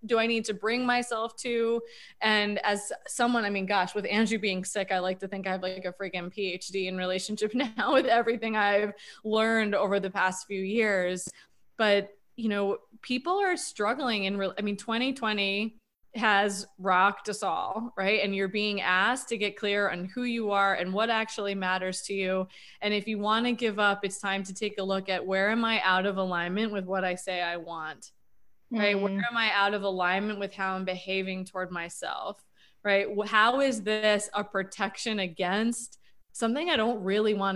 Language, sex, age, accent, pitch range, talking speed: English, female, 20-39, American, 190-225 Hz, 195 wpm